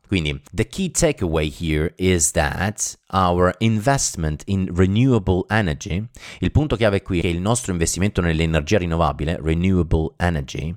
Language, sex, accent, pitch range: Italian, male, native, 85-115 Hz